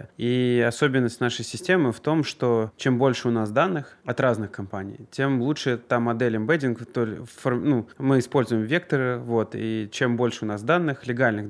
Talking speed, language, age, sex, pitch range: 165 wpm, Russian, 20-39, male, 110-130 Hz